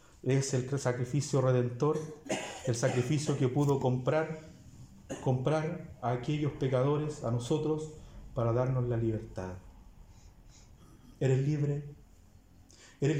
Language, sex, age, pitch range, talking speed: Spanish, male, 40-59, 120-170 Hz, 100 wpm